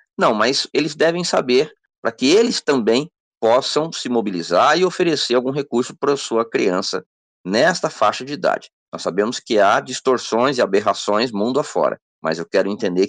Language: Portuguese